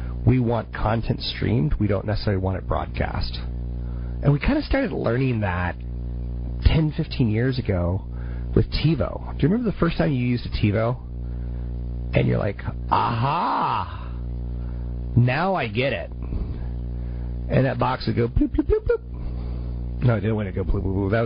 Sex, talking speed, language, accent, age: male, 170 wpm, English, American, 40-59